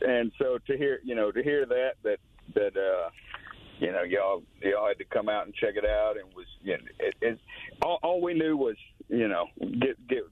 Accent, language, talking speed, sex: American, English, 215 wpm, male